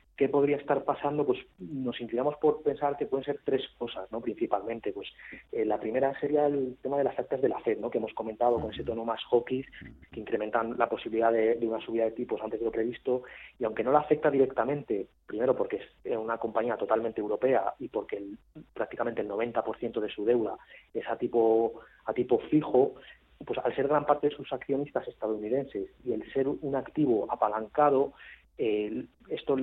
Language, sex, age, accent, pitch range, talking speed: Spanish, male, 30-49, Spanish, 115-140 Hz, 195 wpm